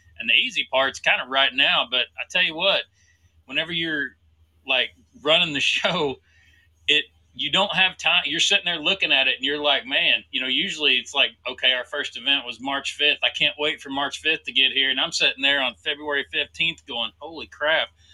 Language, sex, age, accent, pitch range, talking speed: English, male, 30-49, American, 100-150 Hz, 215 wpm